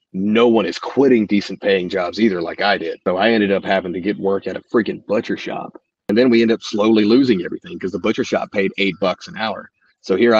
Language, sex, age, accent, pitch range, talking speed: English, male, 30-49, American, 95-110 Hz, 250 wpm